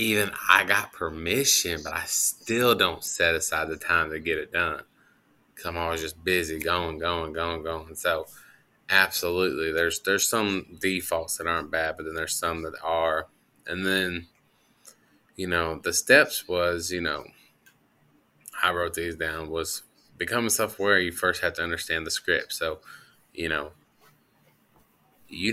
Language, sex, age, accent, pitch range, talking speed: English, male, 20-39, American, 80-90 Hz, 160 wpm